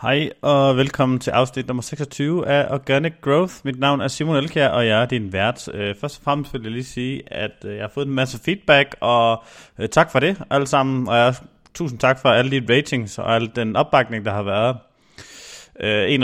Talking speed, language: 205 wpm, Danish